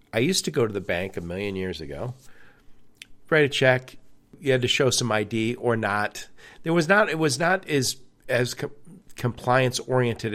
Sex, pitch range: male, 105-135 Hz